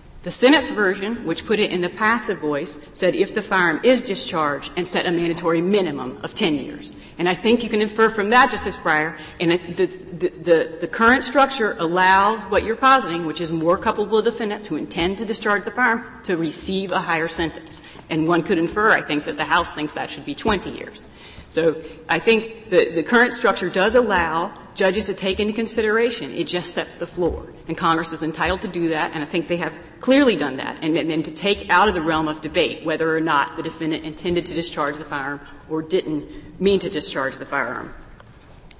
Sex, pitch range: female, 160-205 Hz